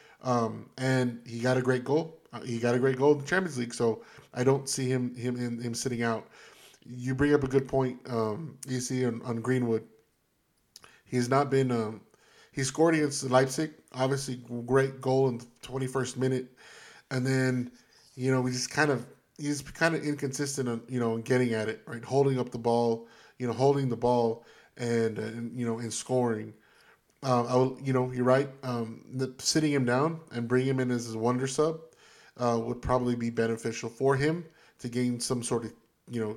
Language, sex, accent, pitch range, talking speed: English, male, American, 120-135 Hz, 205 wpm